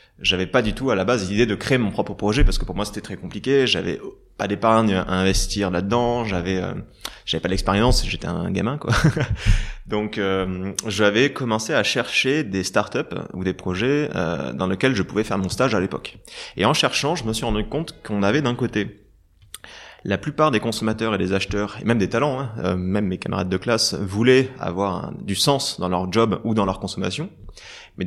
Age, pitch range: 20-39, 95-130 Hz